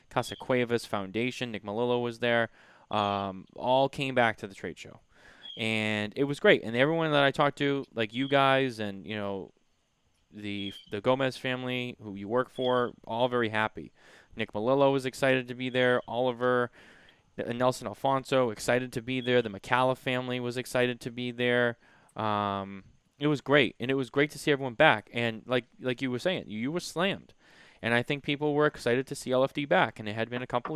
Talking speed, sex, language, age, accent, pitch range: 200 wpm, male, English, 20-39, American, 110-130 Hz